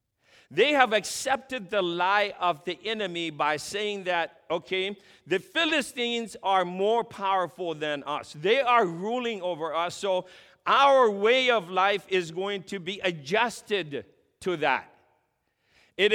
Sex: male